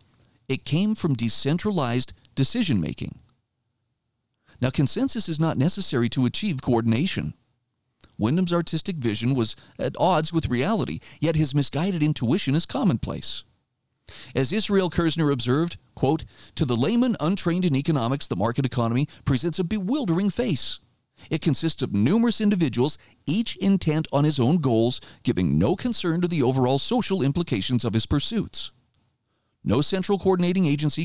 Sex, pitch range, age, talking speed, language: male, 120-170 Hz, 40-59, 135 wpm, English